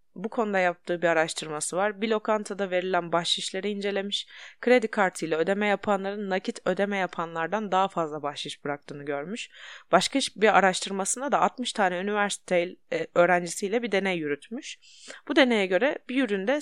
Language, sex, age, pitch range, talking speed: Turkish, female, 20-39, 160-220 Hz, 145 wpm